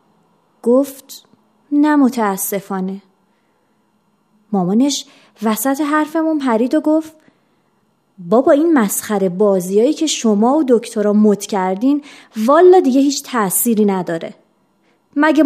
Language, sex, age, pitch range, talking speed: Persian, female, 30-49, 220-315 Hz, 95 wpm